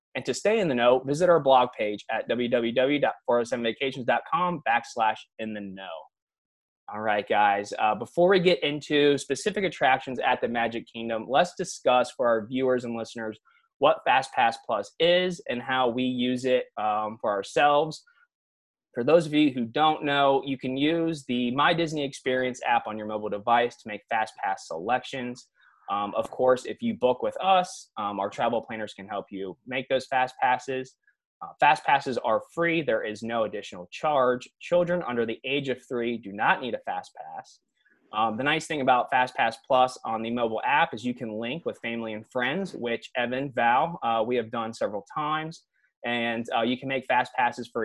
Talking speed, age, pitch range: 190 wpm, 20-39, 115-145 Hz